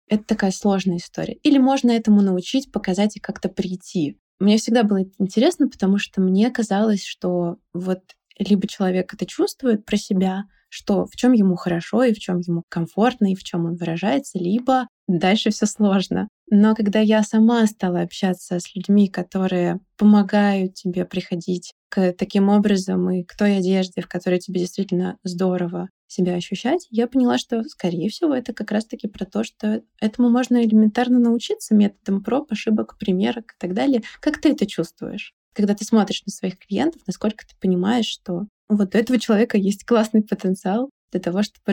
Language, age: Russian, 20-39